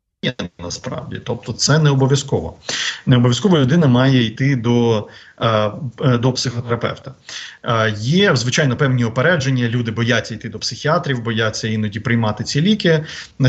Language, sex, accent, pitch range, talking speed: Ukrainian, male, native, 115-145 Hz, 125 wpm